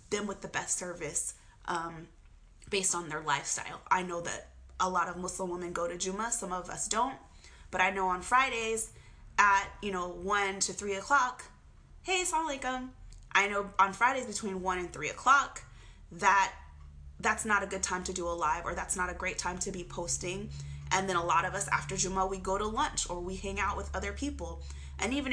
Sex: female